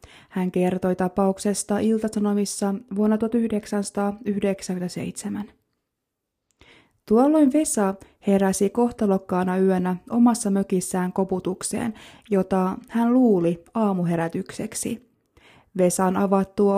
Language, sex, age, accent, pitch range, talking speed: Finnish, female, 20-39, native, 190-220 Hz, 70 wpm